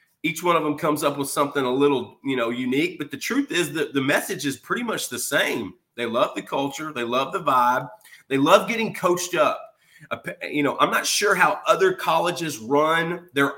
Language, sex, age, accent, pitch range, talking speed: English, male, 30-49, American, 130-170 Hz, 210 wpm